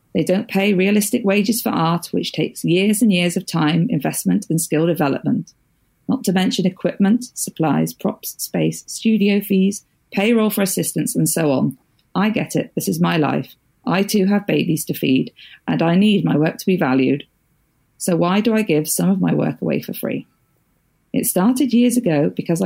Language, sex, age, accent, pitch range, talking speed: English, female, 40-59, British, 155-205 Hz, 190 wpm